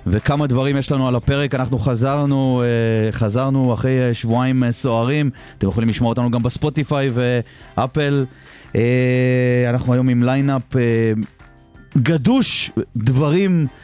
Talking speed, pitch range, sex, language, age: 110 wpm, 110-135 Hz, male, Hebrew, 30-49